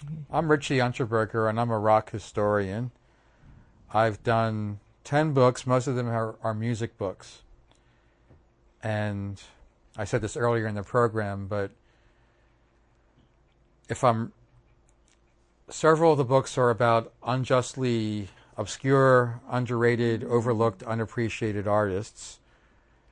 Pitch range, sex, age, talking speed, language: 105-120 Hz, male, 40-59, 110 wpm, English